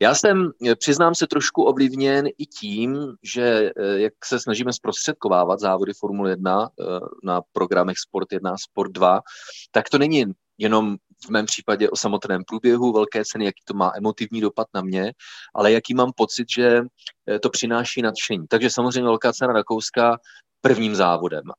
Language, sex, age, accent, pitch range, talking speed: Czech, male, 30-49, native, 105-125 Hz, 155 wpm